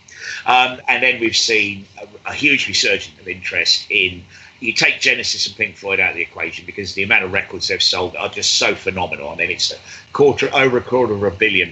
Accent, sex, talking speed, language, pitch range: British, male, 225 wpm, English, 95-115 Hz